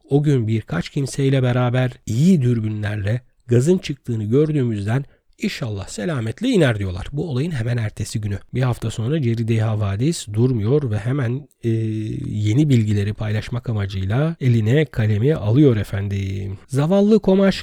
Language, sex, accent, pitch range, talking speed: Turkish, male, native, 120-175 Hz, 130 wpm